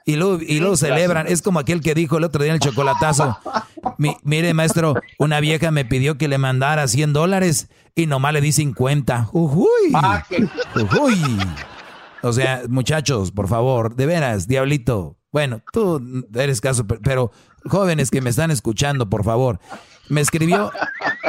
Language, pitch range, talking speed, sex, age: Spanish, 120-155 Hz, 155 wpm, male, 40-59